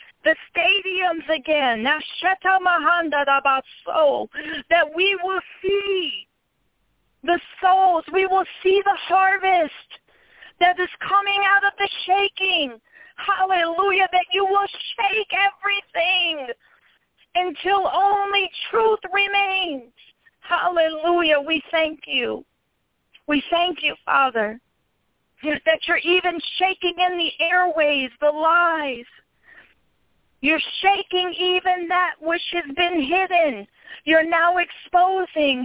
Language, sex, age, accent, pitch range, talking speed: English, female, 40-59, American, 310-375 Hz, 110 wpm